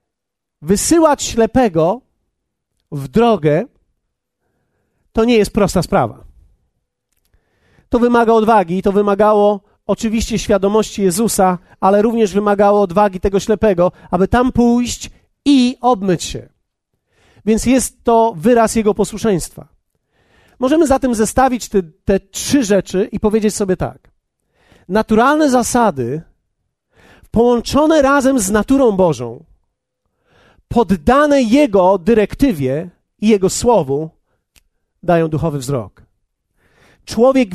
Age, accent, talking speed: 40-59, native, 100 wpm